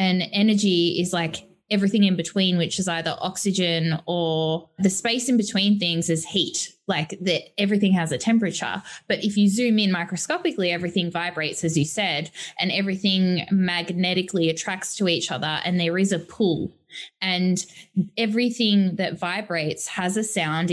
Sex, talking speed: female, 160 wpm